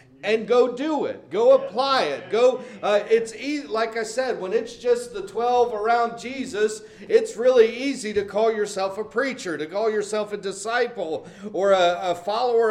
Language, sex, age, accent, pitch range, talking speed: English, male, 40-59, American, 205-255 Hz, 180 wpm